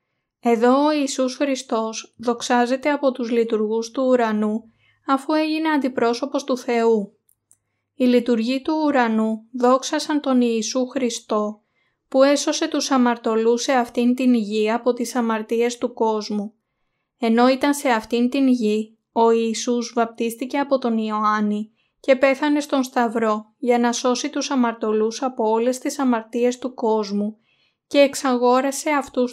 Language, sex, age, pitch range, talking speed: Greek, female, 20-39, 225-265 Hz, 135 wpm